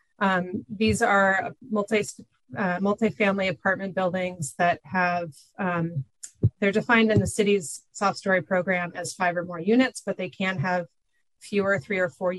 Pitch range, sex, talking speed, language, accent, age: 170-200 Hz, female, 150 wpm, English, American, 30-49